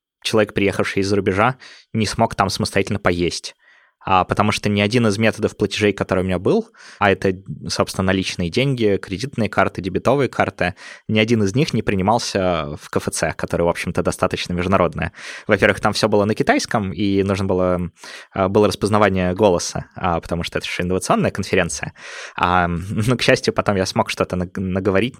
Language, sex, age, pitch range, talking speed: Russian, male, 20-39, 90-110 Hz, 160 wpm